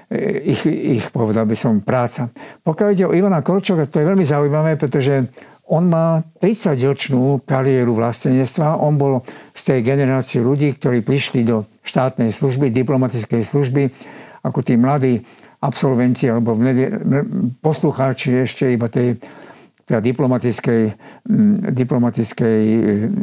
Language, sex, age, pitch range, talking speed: Slovak, male, 50-69, 125-155 Hz, 120 wpm